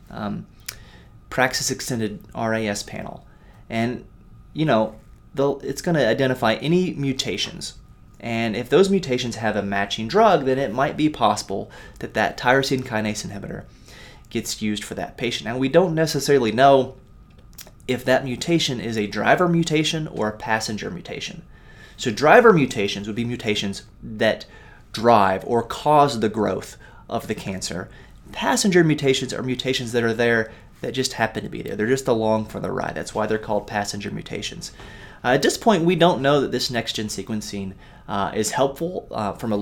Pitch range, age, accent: 105-135 Hz, 30-49, American